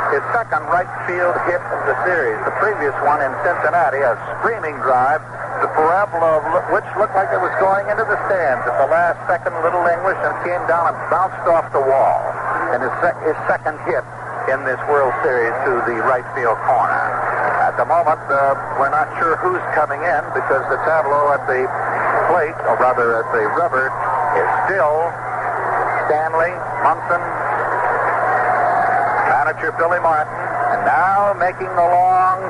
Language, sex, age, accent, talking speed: English, male, 60-79, American, 165 wpm